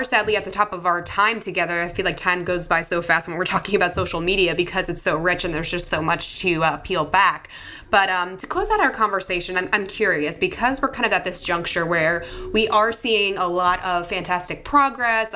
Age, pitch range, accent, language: 20-39, 170-205 Hz, American, English